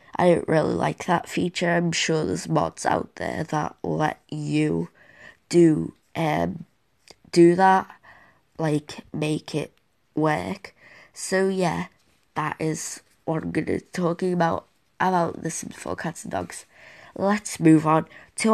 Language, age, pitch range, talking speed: English, 20-39, 155-180 Hz, 140 wpm